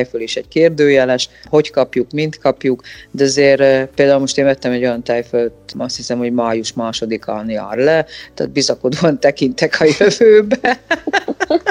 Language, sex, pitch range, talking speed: Hungarian, female, 125-165 Hz, 150 wpm